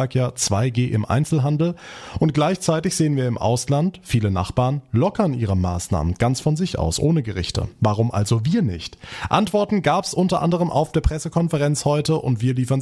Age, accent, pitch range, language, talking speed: 30-49, German, 110-150 Hz, German, 175 wpm